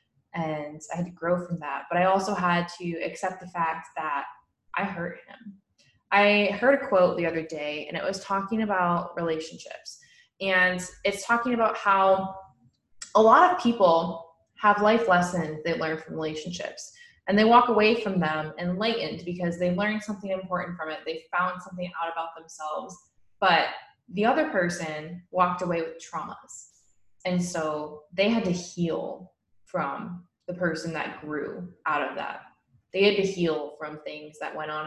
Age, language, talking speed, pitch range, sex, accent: 20-39, English, 170 wpm, 160-200 Hz, female, American